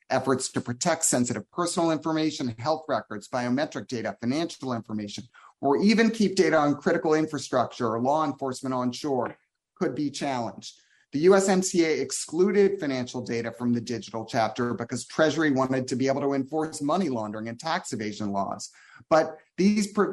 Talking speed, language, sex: 150 wpm, English, male